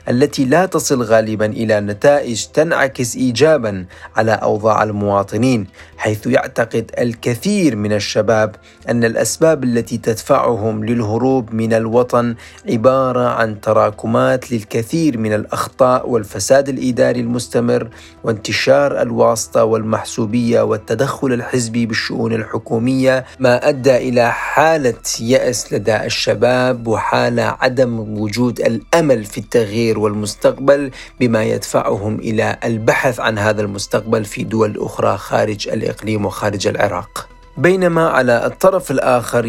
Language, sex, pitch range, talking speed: Arabic, male, 110-130 Hz, 110 wpm